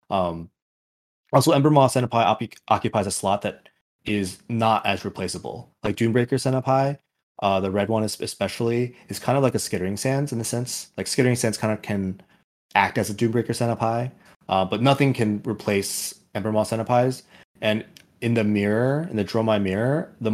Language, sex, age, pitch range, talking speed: English, male, 20-39, 100-120 Hz, 175 wpm